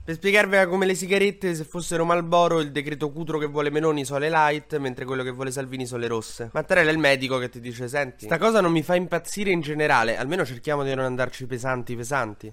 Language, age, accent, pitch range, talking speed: Italian, 20-39, native, 120-160 Hz, 230 wpm